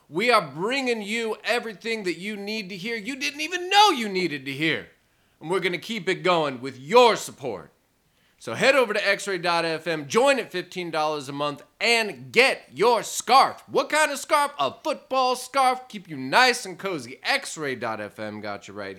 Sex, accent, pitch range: male, American, 180-230 Hz